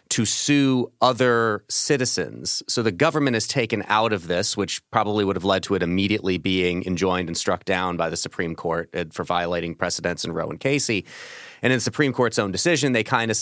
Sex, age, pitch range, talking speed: male, 30-49, 95-125 Hz, 205 wpm